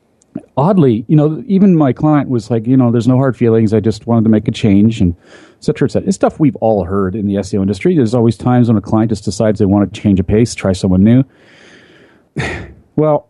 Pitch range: 100-130 Hz